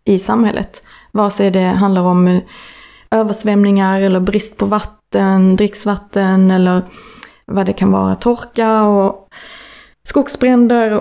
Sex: female